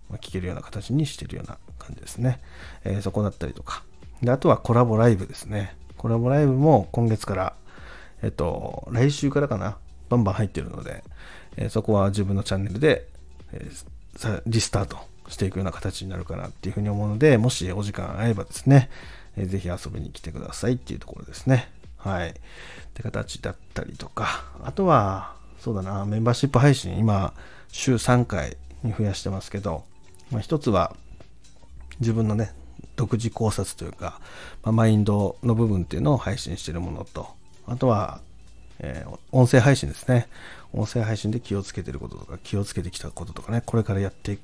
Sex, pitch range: male, 90-120 Hz